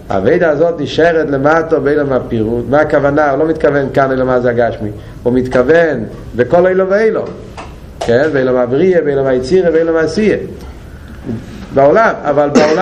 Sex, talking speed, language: male, 100 wpm, Hebrew